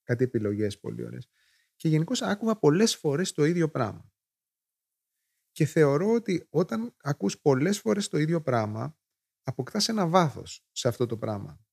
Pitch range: 120-155 Hz